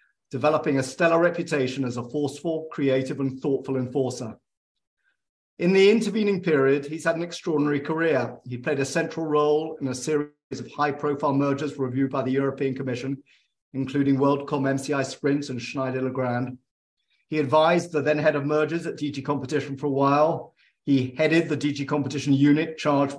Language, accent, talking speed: English, British, 160 wpm